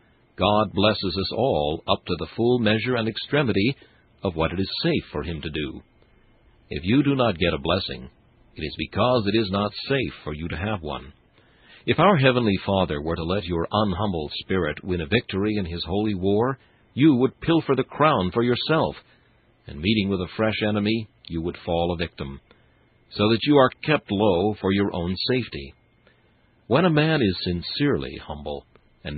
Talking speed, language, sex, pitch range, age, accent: 185 wpm, English, male, 85-115 Hz, 60-79, American